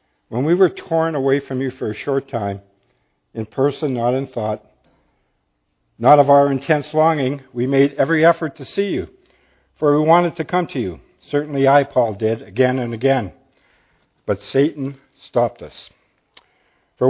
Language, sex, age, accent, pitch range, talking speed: English, male, 60-79, American, 110-140 Hz, 165 wpm